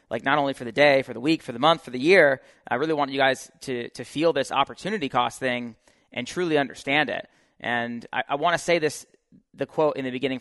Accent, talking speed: American, 240 wpm